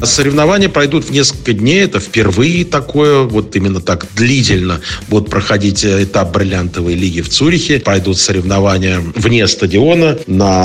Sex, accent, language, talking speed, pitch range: male, native, Russian, 135 wpm, 95-125 Hz